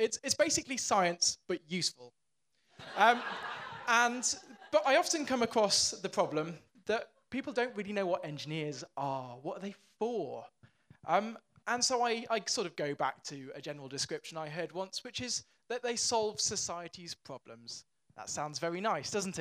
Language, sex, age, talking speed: English, male, 20-39, 165 wpm